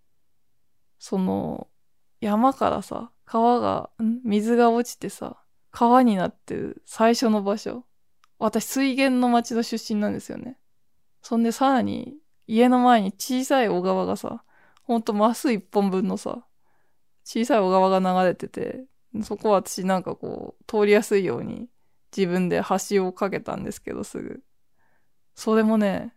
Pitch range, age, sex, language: 205-245 Hz, 20-39, female, Japanese